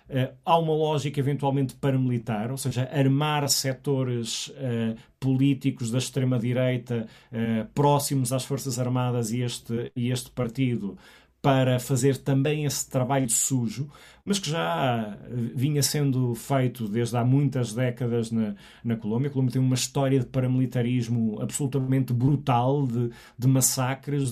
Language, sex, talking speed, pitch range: Portuguese, male, 125 wpm, 125-145 Hz